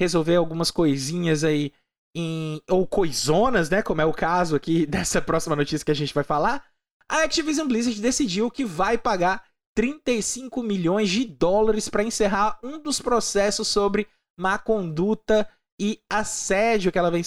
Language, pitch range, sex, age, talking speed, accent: Portuguese, 180-230 Hz, male, 20-39, 155 wpm, Brazilian